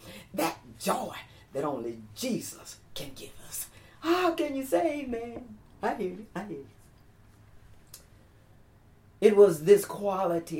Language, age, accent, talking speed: English, 40-59, American, 130 wpm